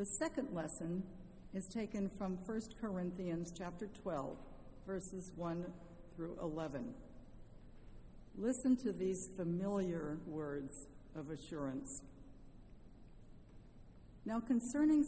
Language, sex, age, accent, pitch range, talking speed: English, female, 60-79, American, 170-215 Hz, 90 wpm